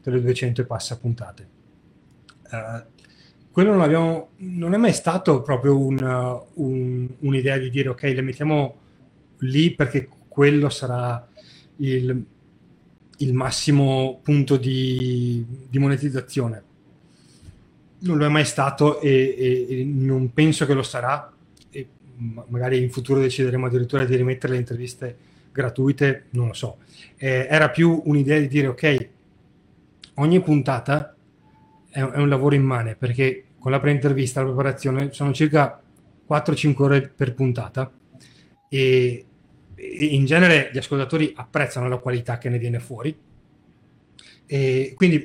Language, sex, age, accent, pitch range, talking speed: Italian, male, 30-49, native, 125-145 Hz, 135 wpm